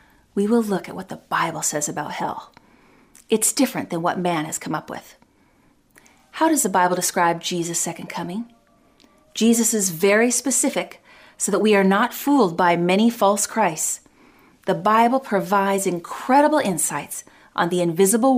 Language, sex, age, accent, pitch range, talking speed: English, female, 40-59, American, 180-235 Hz, 160 wpm